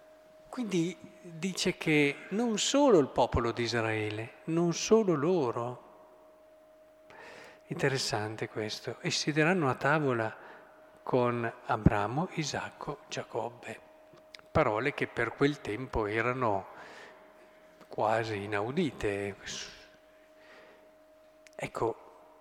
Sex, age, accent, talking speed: male, 50-69, native, 85 wpm